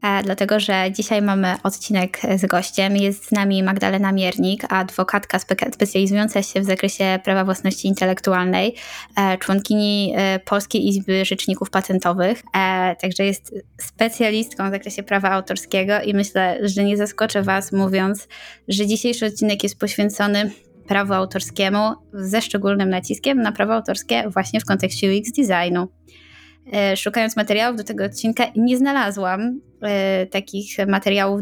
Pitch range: 190-220 Hz